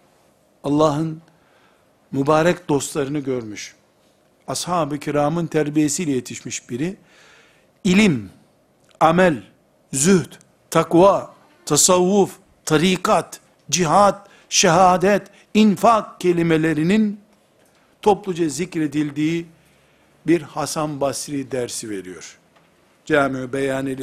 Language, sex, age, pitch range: Turkish, male, 60-79, 150-205 Hz